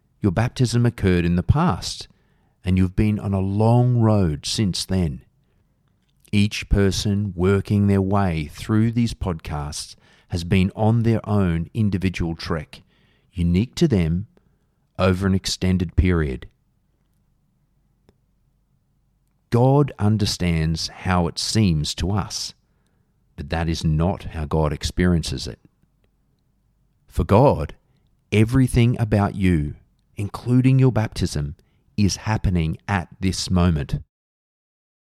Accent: Australian